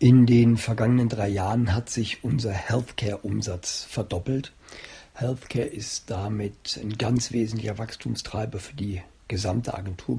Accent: German